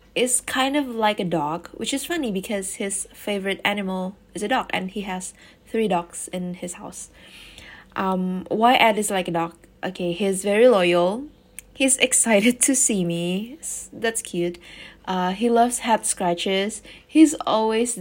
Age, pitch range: 20-39, 180-225 Hz